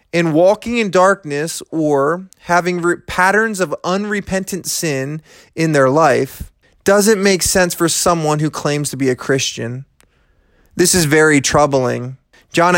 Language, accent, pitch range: English, American, 140-185 Hz